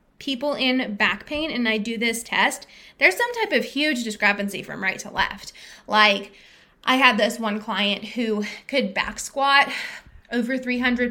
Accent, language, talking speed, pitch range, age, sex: American, English, 165 wpm, 210-265 Hz, 20-39, female